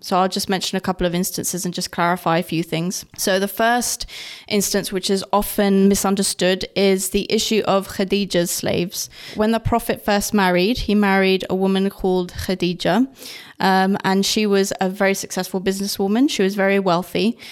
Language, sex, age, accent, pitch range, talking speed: English, female, 20-39, British, 185-210 Hz, 175 wpm